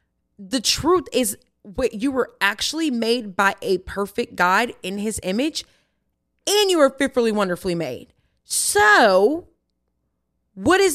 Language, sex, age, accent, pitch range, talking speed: English, female, 20-39, American, 205-265 Hz, 130 wpm